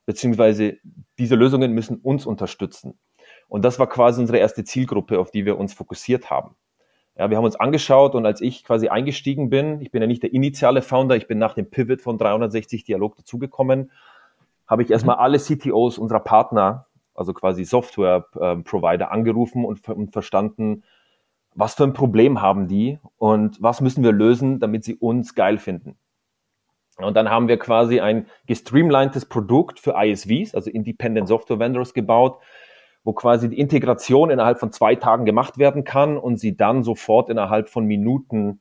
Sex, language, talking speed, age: male, German, 170 wpm, 30-49